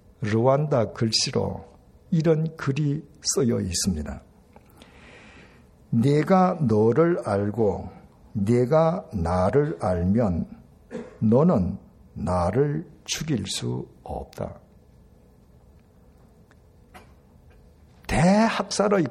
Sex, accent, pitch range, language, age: male, native, 90-150 Hz, Korean, 60-79